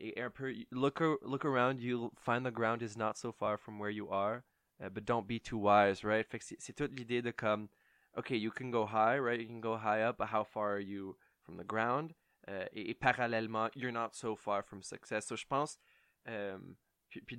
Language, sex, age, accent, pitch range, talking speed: French, male, 20-39, Canadian, 105-120 Hz, 205 wpm